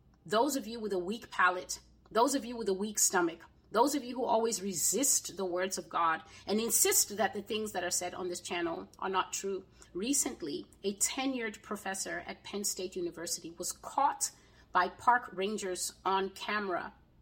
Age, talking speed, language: 30-49, 185 wpm, English